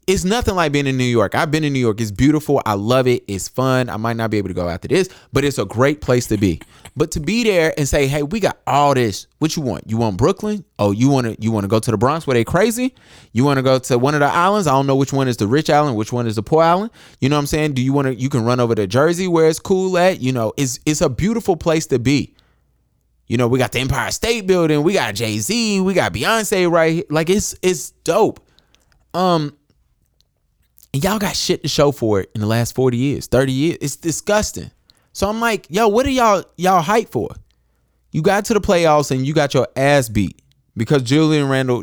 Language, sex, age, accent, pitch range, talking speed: English, male, 20-39, American, 105-155 Hz, 260 wpm